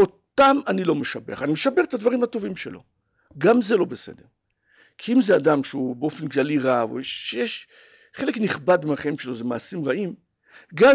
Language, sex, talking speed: Hebrew, male, 175 wpm